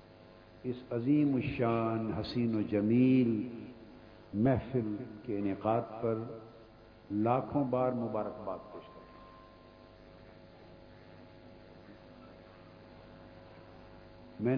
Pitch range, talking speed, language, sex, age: 90-125 Hz, 65 wpm, Urdu, male, 60-79